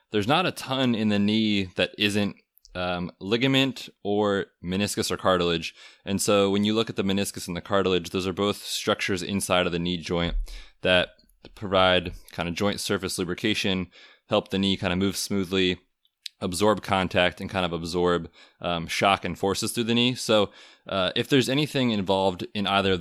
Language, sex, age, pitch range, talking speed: English, male, 20-39, 90-105 Hz, 185 wpm